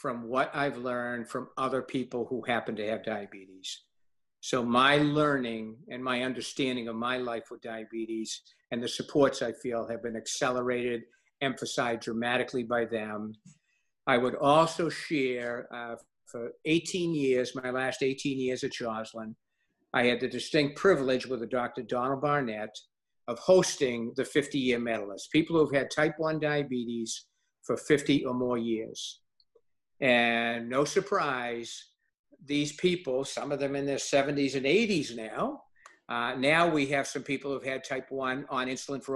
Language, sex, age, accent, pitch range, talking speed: English, male, 50-69, American, 120-140 Hz, 155 wpm